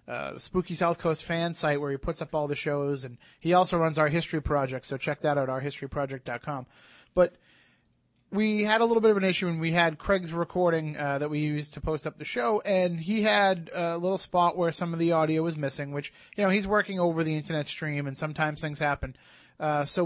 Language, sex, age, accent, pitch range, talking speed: English, male, 30-49, American, 150-185 Hz, 230 wpm